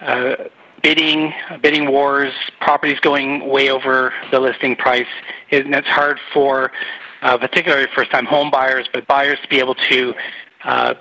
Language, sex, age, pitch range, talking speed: English, male, 40-59, 130-155 Hz, 160 wpm